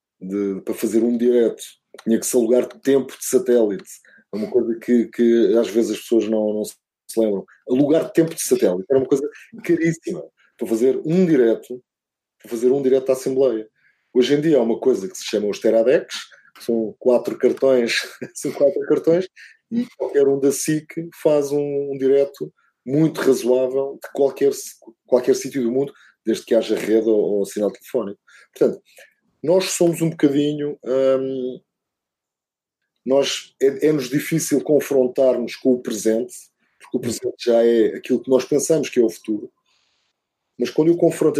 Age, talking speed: 20-39, 165 wpm